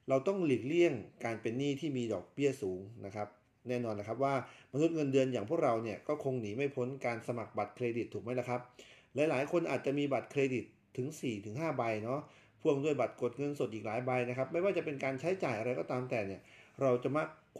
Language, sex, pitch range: Thai, male, 115-150 Hz